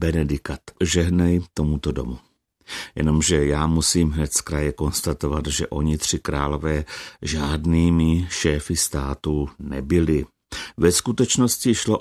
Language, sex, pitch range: Czech, male, 75-90 Hz